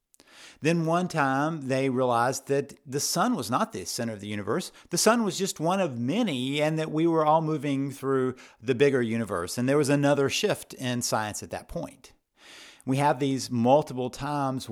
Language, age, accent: English, 50-69, American